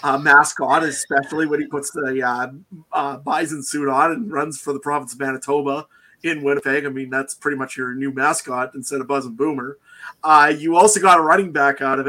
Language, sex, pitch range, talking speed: English, male, 135-155 Hz, 220 wpm